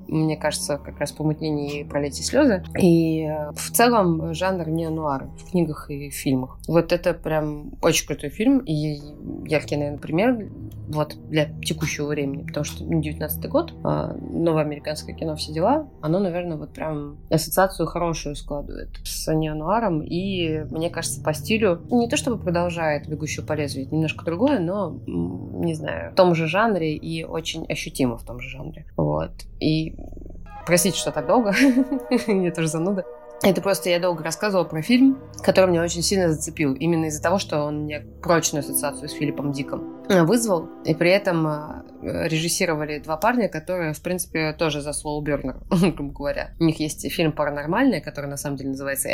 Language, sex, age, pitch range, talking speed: Russian, female, 20-39, 145-170 Hz, 160 wpm